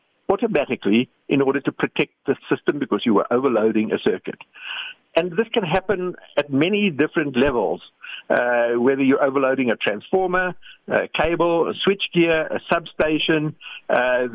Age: 60-79